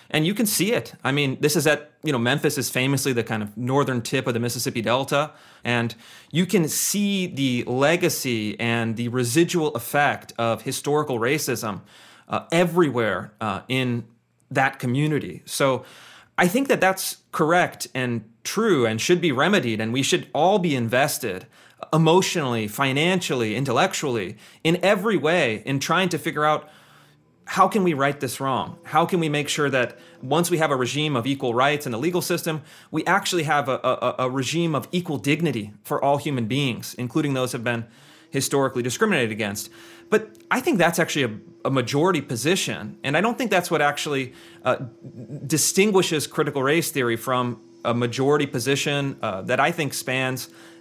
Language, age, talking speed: English, 30-49, 175 wpm